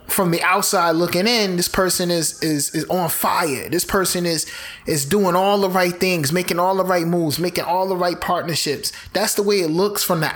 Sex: male